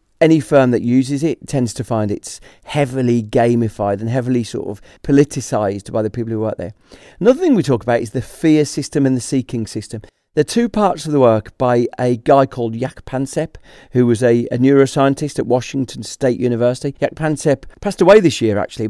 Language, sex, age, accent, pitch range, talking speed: English, male, 40-59, British, 115-145 Hz, 205 wpm